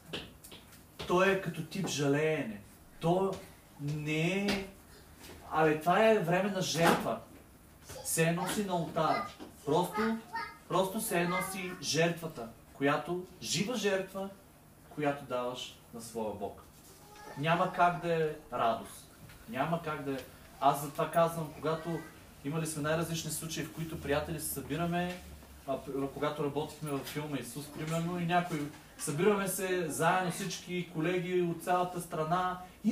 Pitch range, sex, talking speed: 150-210 Hz, male, 135 wpm